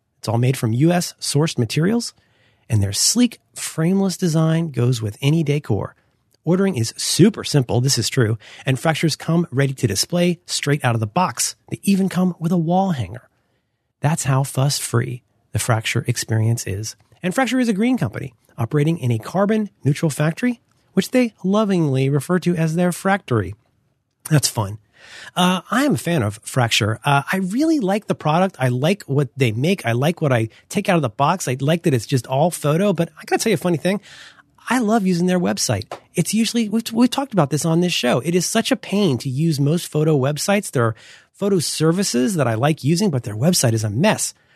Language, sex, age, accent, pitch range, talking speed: English, male, 30-49, American, 120-180 Hz, 200 wpm